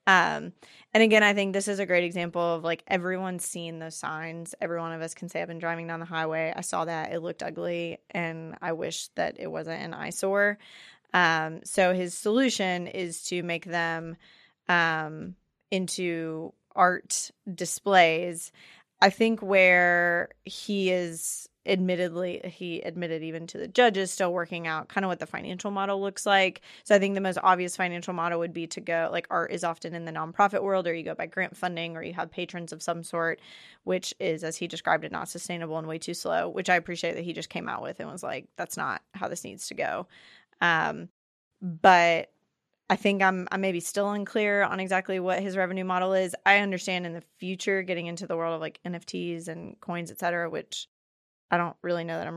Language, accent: English, American